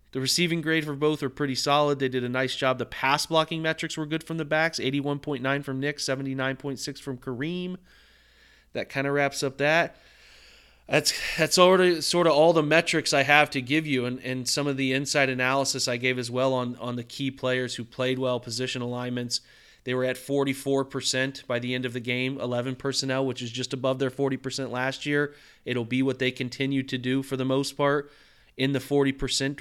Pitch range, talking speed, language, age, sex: 125-145 Hz, 205 wpm, English, 30-49, male